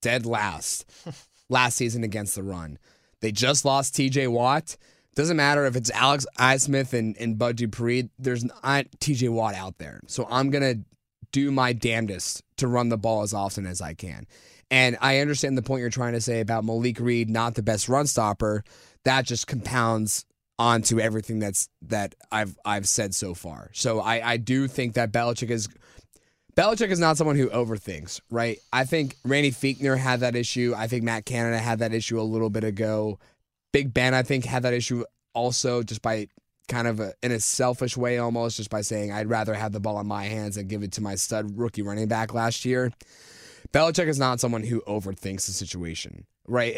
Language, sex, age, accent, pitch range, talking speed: English, male, 20-39, American, 110-125 Hz, 200 wpm